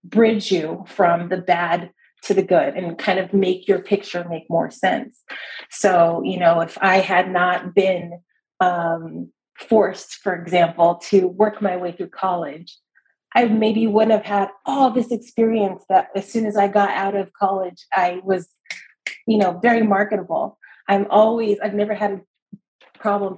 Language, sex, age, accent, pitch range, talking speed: English, female, 30-49, American, 180-215 Hz, 165 wpm